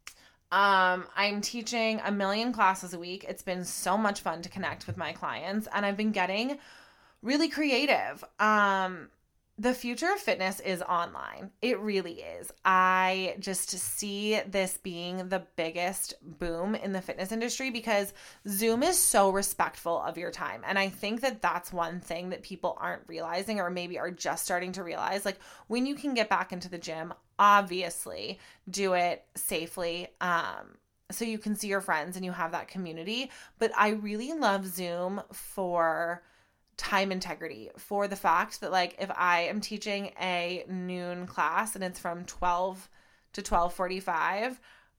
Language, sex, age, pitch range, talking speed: English, female, 20-39, 180-205 Hz, 165 wpm